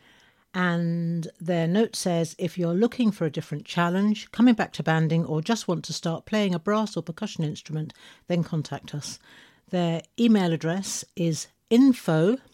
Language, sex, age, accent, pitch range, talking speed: English, female, 60-79, British, 160-210 Hz, 165 wpm